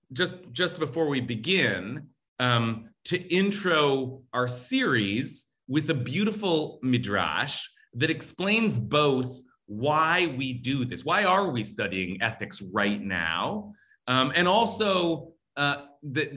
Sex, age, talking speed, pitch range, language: male, 30-49, 120 wpm, 100-140 Hz, English